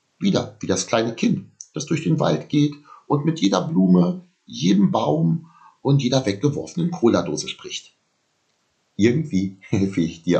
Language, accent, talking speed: German, German, 145 wpm